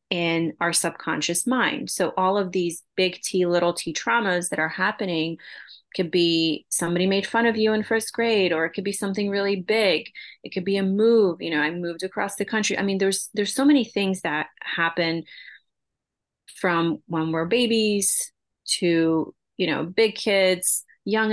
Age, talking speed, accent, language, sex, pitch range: 30-49, 180 wpm, American, English, female, 170-205 Hz